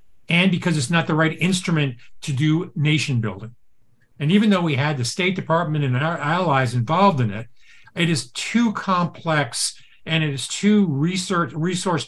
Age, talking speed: 50-69, 170 wpm